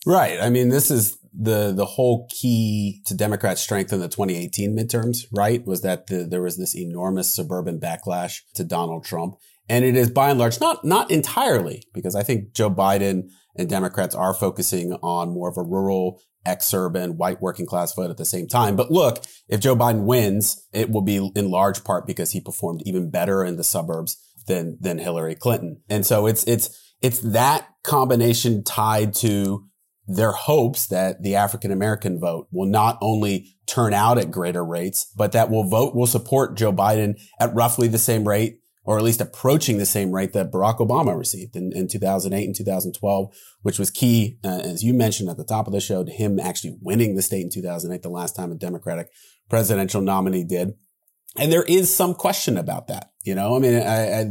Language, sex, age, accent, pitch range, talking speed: English, male, 30-49, American, 95-115 Hz, 195 wpm